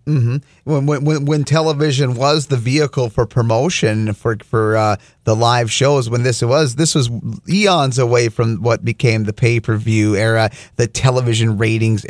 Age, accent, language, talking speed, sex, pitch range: 30-49, American, English, 170 wpm, male, 125-175 Hz